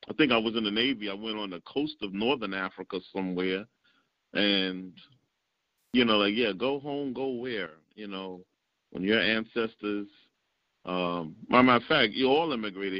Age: 50-69